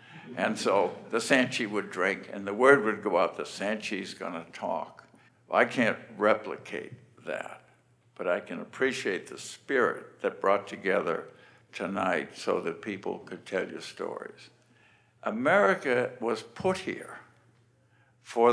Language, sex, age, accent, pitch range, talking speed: English, male, 60-79, American, 110-130 Hz, 135 wpm